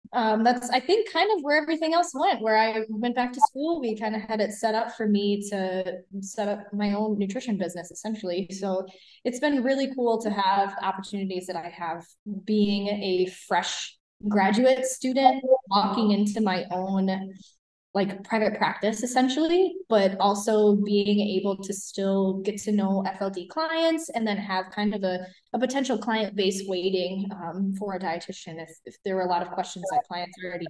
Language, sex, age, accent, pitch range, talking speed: English, female, 10-29, American, 190-235 Hz, 185 wpm